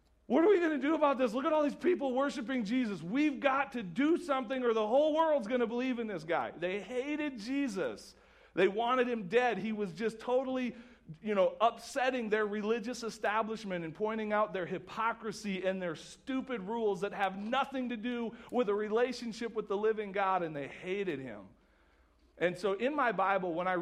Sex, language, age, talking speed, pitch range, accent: male, English, 40-59, 200 wpm, 155-225 Hz, American